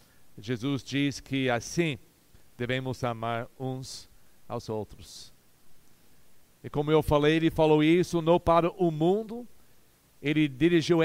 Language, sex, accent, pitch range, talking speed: Portuguese, male, Brazilian, 120-170 Hz, 120 wpm